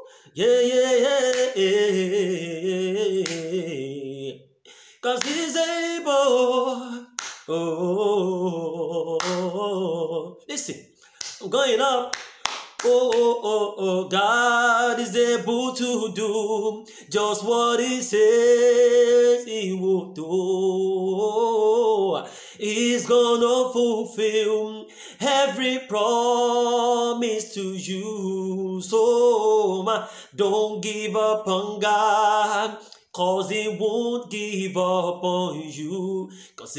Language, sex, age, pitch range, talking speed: English, male, 30-49, 190-255 Hz, 90 wpm